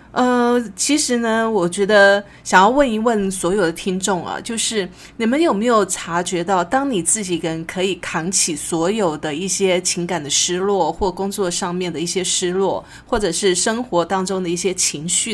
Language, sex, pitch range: Chinese, female, 170-215 Hz